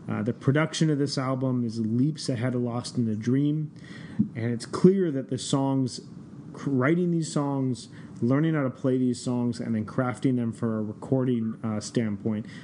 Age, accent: 30-49, American